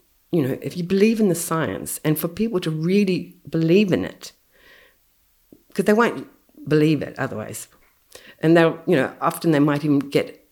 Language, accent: English, Australian